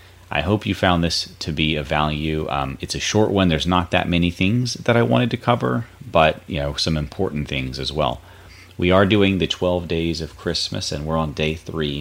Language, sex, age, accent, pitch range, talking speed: English, male, 30-49, American, 75-90 Hz, 225 wpm